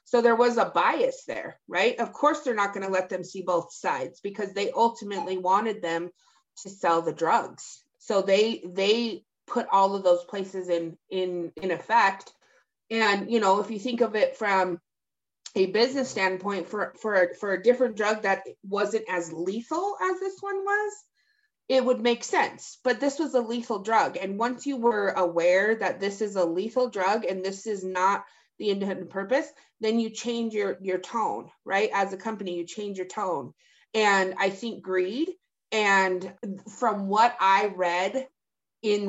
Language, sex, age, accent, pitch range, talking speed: English, female, 30-49, American, 185-235 Hz, 180 wpm